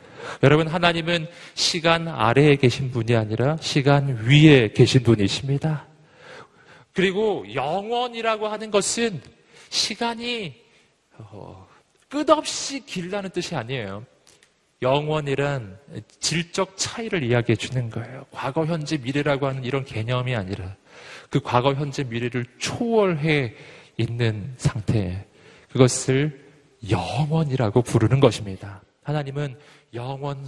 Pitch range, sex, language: 125-175 Hz, male, Korean